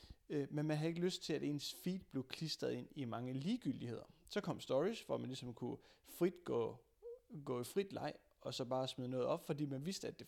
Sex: male